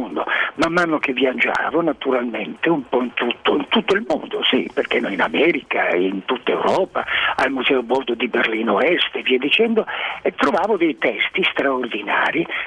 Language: Italian